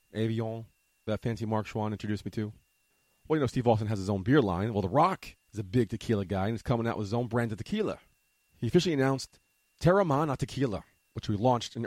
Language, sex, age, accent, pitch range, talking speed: English, male, 30-49, American, 95-125 Hz, 235 wpm